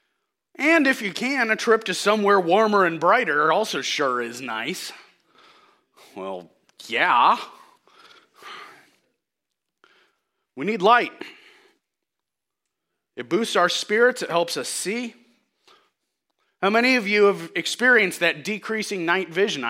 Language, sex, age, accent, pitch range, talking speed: English, male, 30-49, American, 150-250 Hz, 115 wpm